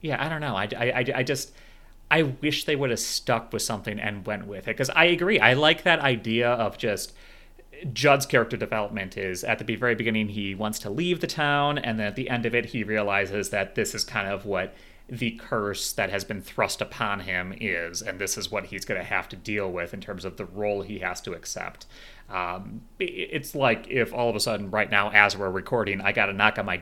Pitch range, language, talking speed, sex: 95-120 Hz, English, 235 wpm, male